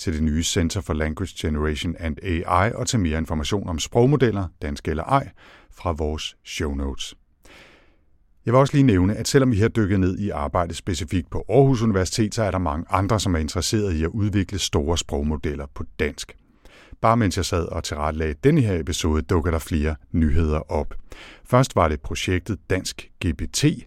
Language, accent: Danish, native